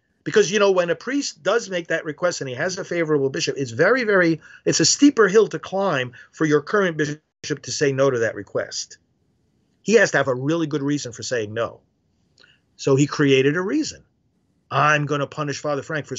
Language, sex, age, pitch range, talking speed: English, male, 50-69, 140-195 Hz, 215 wpm